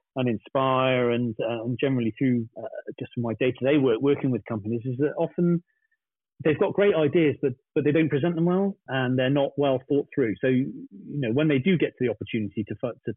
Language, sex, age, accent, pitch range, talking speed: English, male, 40-59, British, 125-155 Hz, 225 wpm